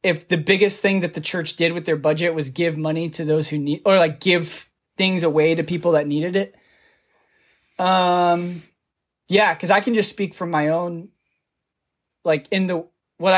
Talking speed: 190 wpm